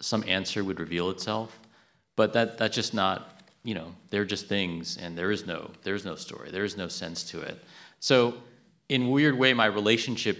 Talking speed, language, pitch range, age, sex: 195 wpm, English, 90-115 Hz, 30-49, male